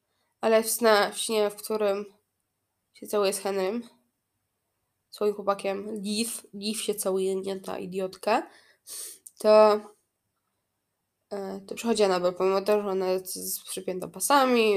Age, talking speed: 20-39, 120 wpm